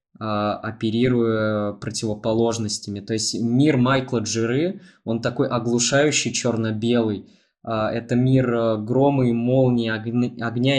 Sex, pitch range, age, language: male, 110-125 Hz, 20-39, Russian